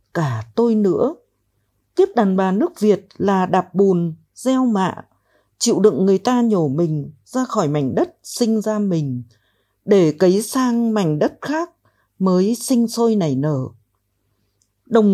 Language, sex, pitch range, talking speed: Vietnamese, female, 145-230 Hz, 150 wpm